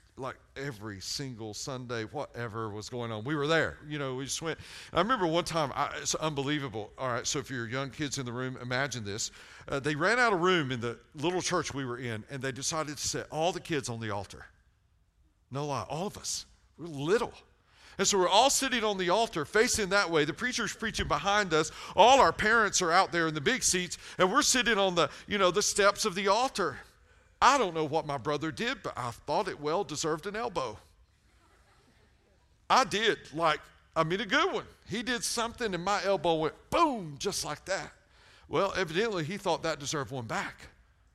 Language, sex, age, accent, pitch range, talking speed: English, male, 40-59, American, 120-190 Hz, 215 wpm